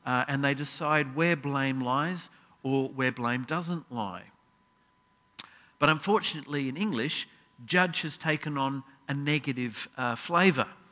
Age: 50-69